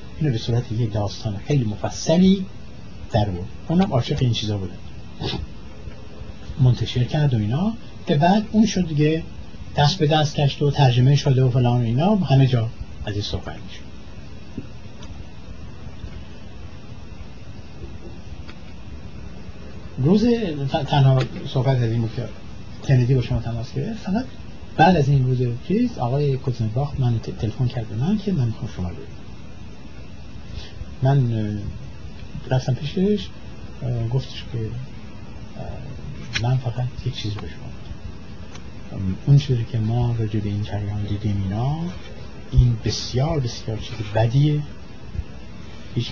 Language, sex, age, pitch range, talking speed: Persian, male, 60-79, 105-140 Hz, 115 wpm